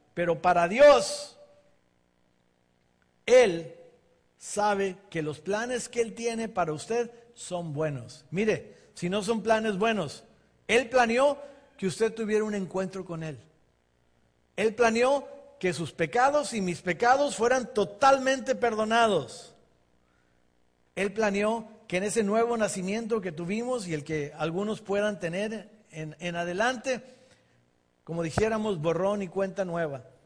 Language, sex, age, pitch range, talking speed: English, male, 50-69, 160-230 Hz, 130 wpm